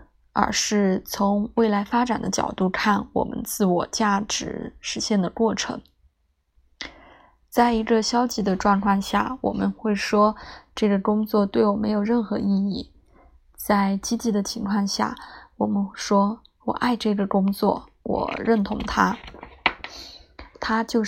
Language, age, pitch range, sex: Chinese, 20-39, 190-225 Hz, female